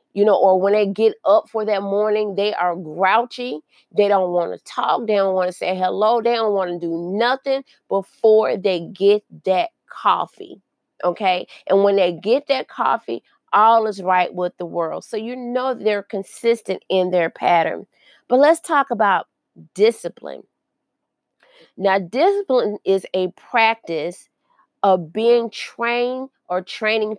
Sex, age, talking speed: female, 30-49, 155 wpm